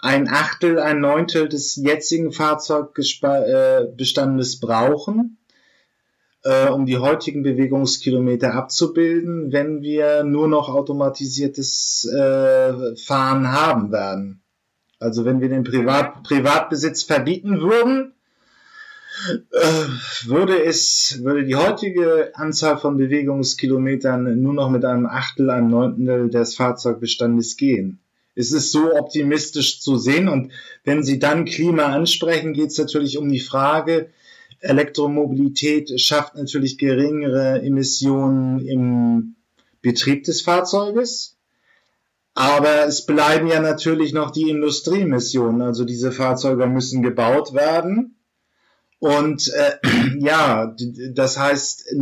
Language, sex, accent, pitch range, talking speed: German, male, German, 130-160 Hz, 105 wpm